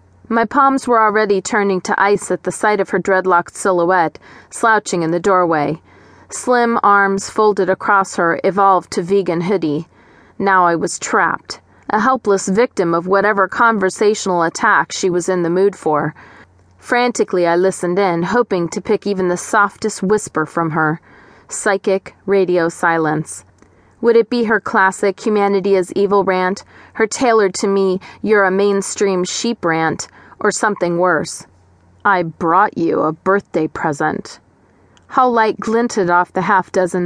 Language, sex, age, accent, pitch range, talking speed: English, female, 30-49, American, 170-210 Hz, 150 wpm